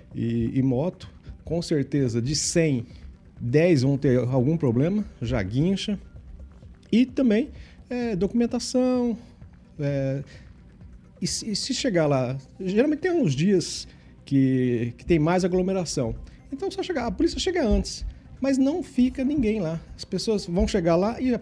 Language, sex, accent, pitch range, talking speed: Portuguese, male, Brazilian, 165-250 Hz, 145 wpm